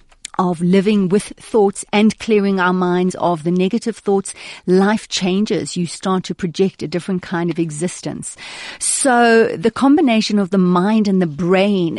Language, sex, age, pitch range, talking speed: English, female, 40-59, 175-225 Hz, 160 wpm